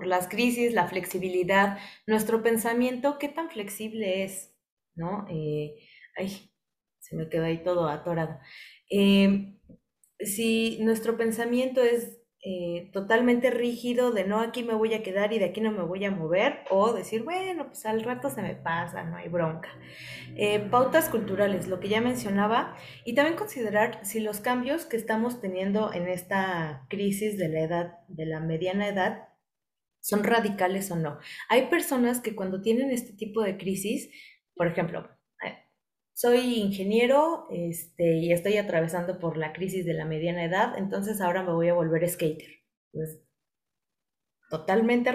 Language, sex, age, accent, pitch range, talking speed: Spanish, female, 20-39, Mexican, 170-225 Hz, 155 wpm